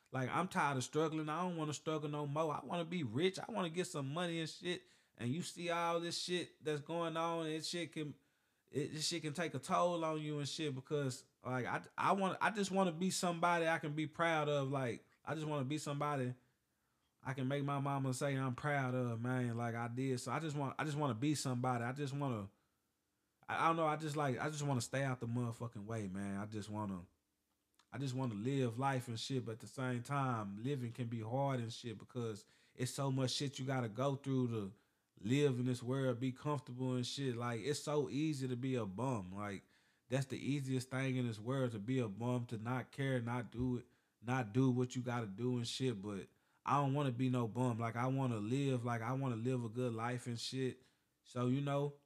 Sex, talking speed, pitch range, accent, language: male, 250 wpm, 120-150 Hz, American, English